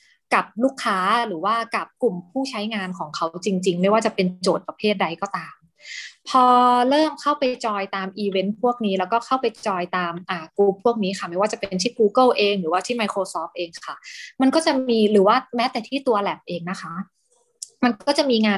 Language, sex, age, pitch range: Thai, female, 20-39, 185-235 Hz